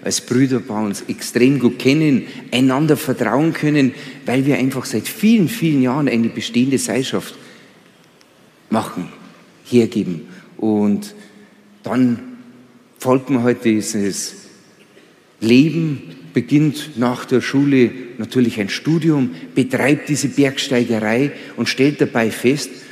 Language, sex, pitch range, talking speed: German, male, 120-155 Hz, 115 wpm